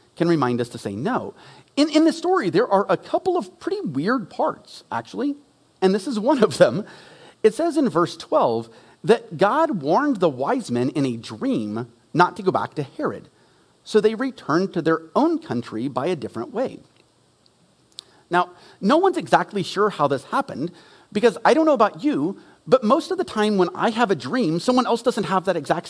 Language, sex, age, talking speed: English, male, 40-59, 200 wpm